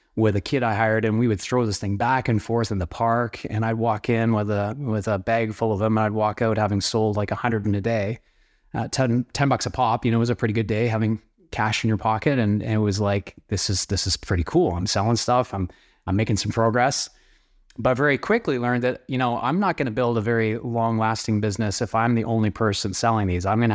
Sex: male